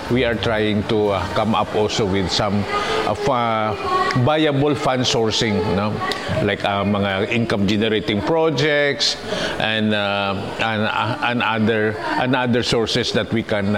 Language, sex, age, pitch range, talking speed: Filipino, male, 50-69, 100-125 Hz, 150 wpm